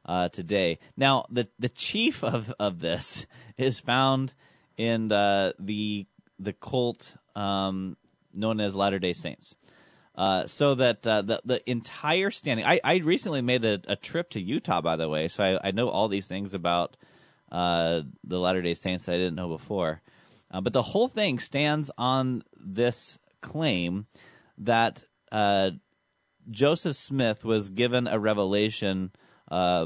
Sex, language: male, English